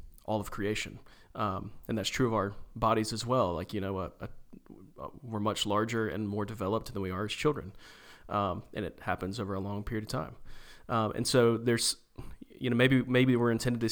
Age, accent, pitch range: 30-49, American, 100-120 Hz